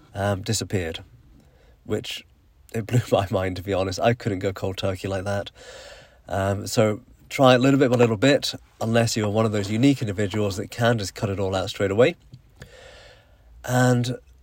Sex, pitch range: male, 100-130 Hz